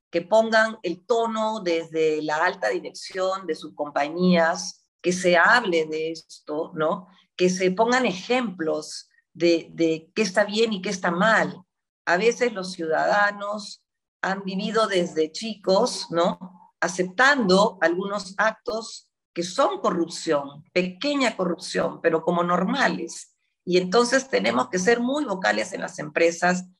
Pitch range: 170-220 Hz